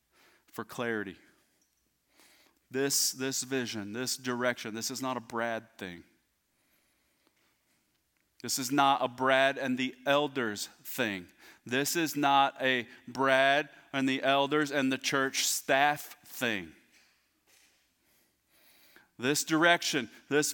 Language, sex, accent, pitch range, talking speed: English, male, American, 140-180 Hz, 110 wpm